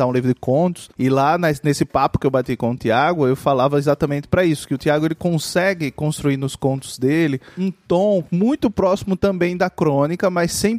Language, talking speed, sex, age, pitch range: Portuguese, 205 wpm, male, 20-39, 130-165 Hz